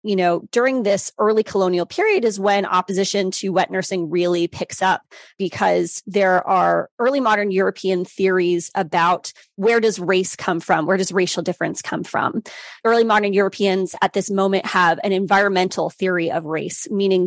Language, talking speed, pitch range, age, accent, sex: English, 165 wpm, 180-210 Hz, 30-49, American, female